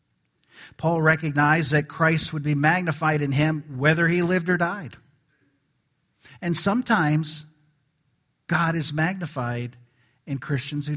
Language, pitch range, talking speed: English, 140-180 Hz, 120 wpm